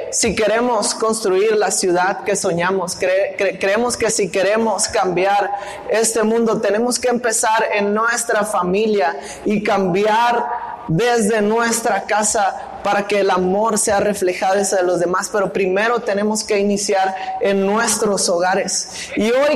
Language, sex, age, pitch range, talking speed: Spanish, male, 20-39, 205-245 Hz, 145 wpm